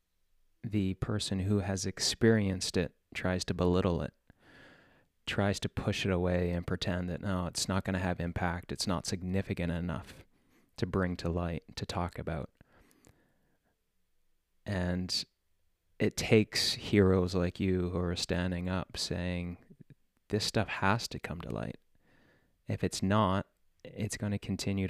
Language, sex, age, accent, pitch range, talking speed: English, male, 20-39, American, 90-100 Hz, 145 wpm